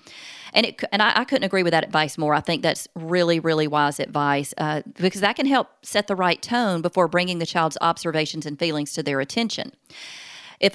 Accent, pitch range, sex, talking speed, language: American, 160-195 Hz, female, 210 wpm, English